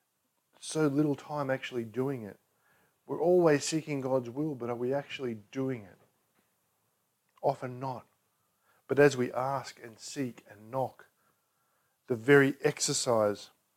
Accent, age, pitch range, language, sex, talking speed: Australian, 40-59, 120-155 Hz, English, male, 130 wpm